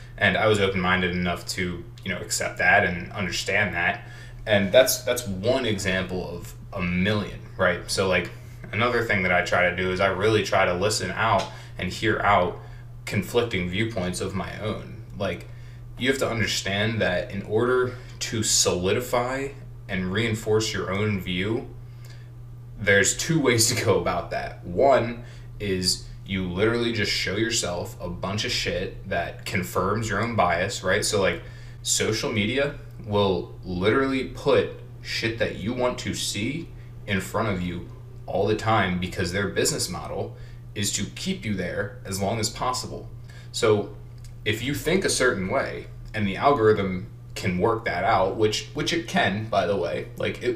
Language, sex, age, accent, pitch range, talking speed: English, male, 20-39, American, 100-120 Hz, 165 wpm